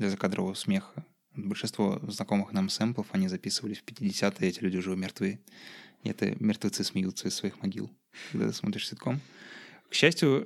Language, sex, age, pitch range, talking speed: Russian, male, 20-39, 100-155 Hz, 160 wpm